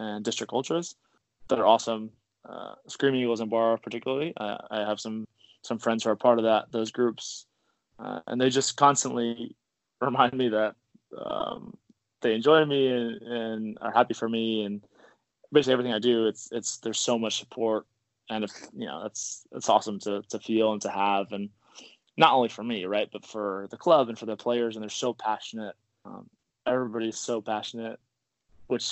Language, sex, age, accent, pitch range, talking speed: English, male, 20-39, American, 110-125 Hz, 185 wpm